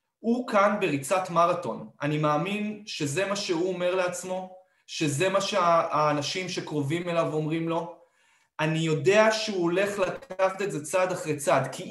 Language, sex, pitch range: Hebrew, male, 155-210 Hz